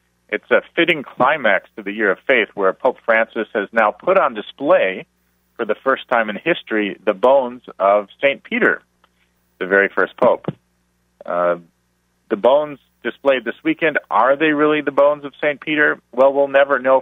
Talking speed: 175 wpm